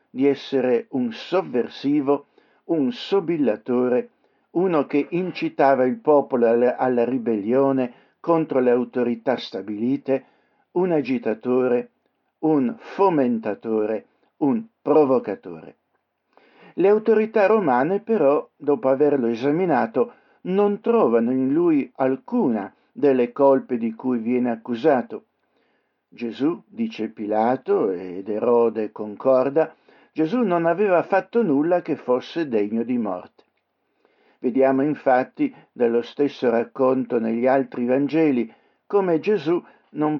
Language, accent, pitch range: Italian, native, 120-160 Hz